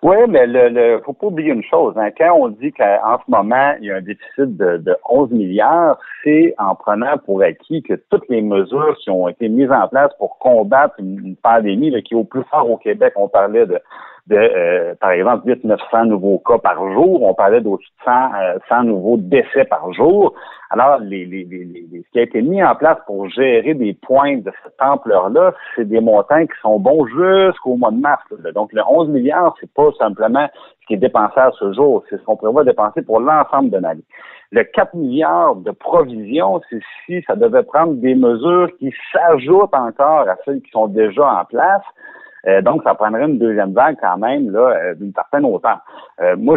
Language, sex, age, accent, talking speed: French, male, 60-79, French, 210 wpm